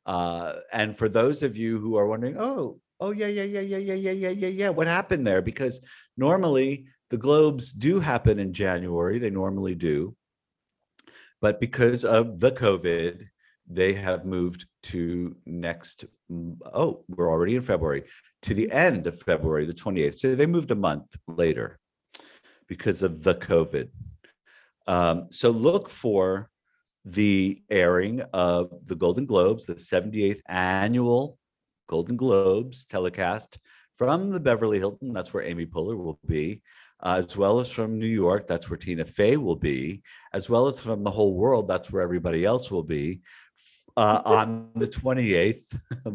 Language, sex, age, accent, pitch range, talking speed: English, male, 50-69, American, 90-125 Hz, 160 wpm